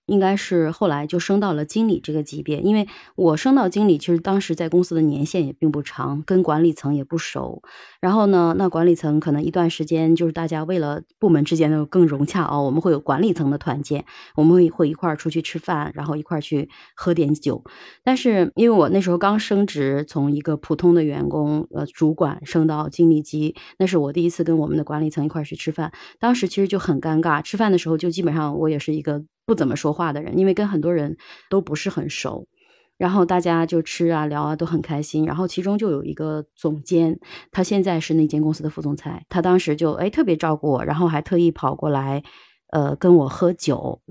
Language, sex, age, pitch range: Chinese, female, 20-39, 150-180 Hz